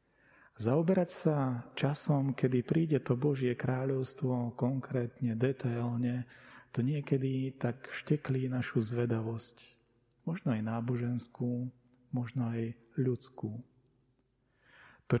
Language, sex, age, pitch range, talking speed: Slovak, male, 40-59, 120-135 Hz, 90 wpm